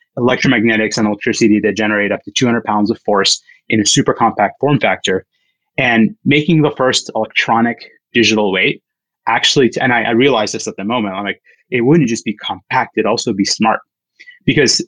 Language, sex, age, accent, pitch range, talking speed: English, male, 30-49, American, 105-145 Hz, 185 wpm